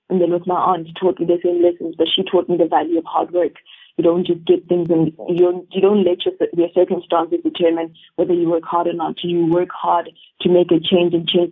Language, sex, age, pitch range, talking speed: English, female, 20-39, 165-180 Hz, 245 wpm